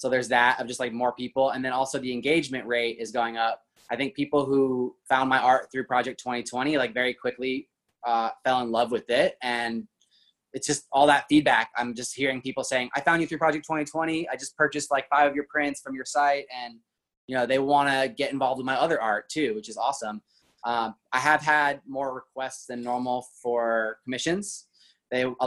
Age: 20-39